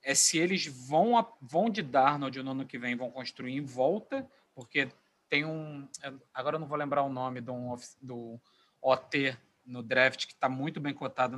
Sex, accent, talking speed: male, Brazilian, 185 wpm